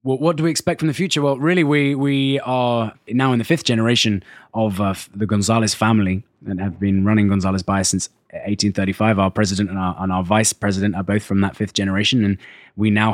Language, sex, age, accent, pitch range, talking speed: English, male, 20-39, British, 100-120 Hz, 220 wpm